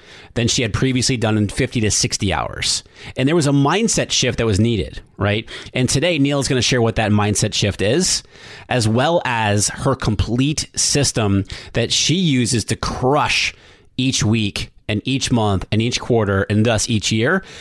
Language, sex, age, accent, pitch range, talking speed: English, male, 30-49, American, 105-130 Hz, 185 wpm